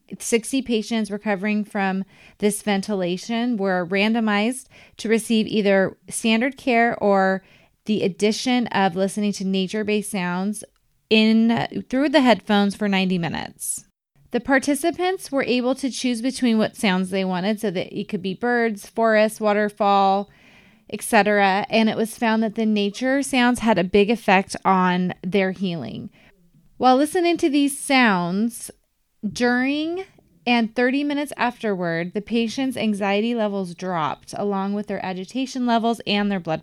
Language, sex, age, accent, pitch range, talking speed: English, female, 20-39, American, 185-225 Hz, 140 wpm